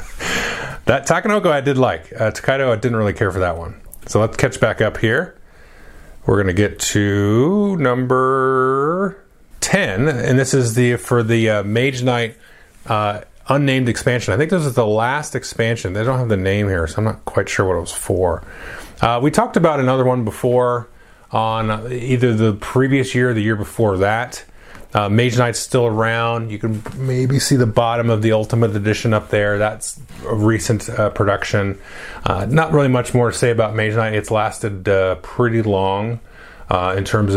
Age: 30-49